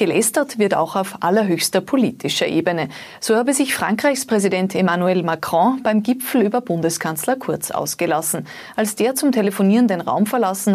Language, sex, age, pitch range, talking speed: German, female, 30-49, 180-240 Hz, 150 wpm